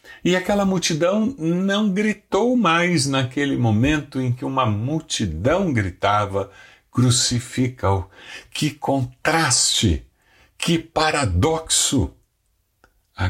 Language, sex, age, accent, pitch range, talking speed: Portuguese, male, 60-79, Brazilian, 95-125 Hz, 85 wpm